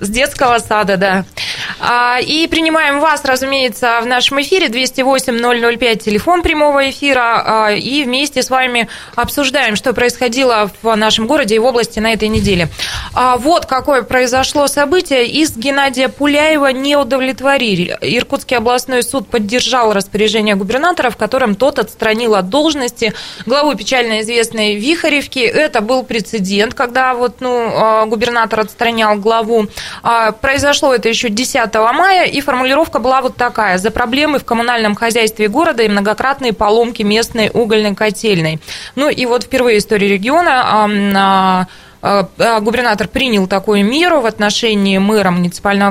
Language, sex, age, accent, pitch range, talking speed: Russian, female, 20-39, native, 215-265 Hz, 135 wpm